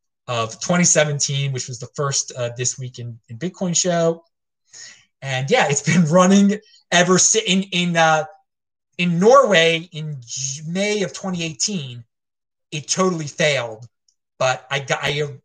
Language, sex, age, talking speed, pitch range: English, male, 30-49, 135 wpm, 135-180 Hz